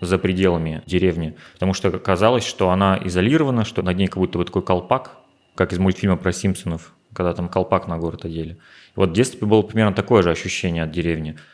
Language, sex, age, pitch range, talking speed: Russian, male, 30-49, 90-105 Hz, 200 wpm